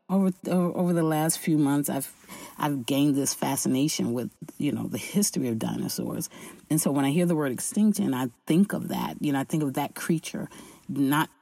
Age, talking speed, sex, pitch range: 40-59, 200 wpm, female, 135-185 Hz